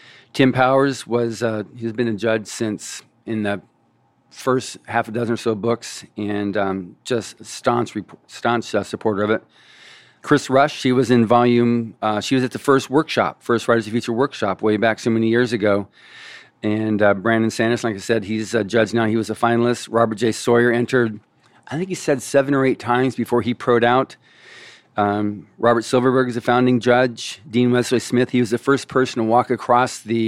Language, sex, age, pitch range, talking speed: English, male, 40-59, 110-125 Hz, 200 wpm